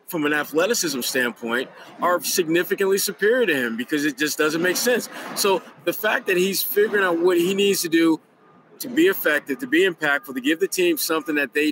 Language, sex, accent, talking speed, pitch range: English, male, American, 205 wpm, 150-210 Hz